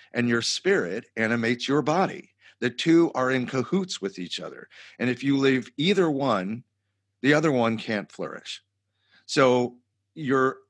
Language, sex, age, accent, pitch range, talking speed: English, male, 50-69, American, 100-125 Hz, 150 wpm